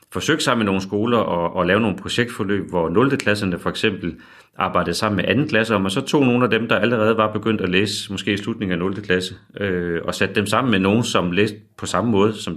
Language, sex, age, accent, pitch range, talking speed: Danish, male, 30-49, native, 95-110 Hz, 245 wpm